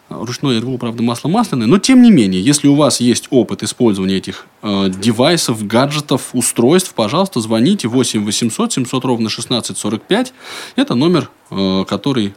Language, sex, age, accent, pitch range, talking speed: Russian, male, 20-39, native, 105-145 Hz, 155 wpm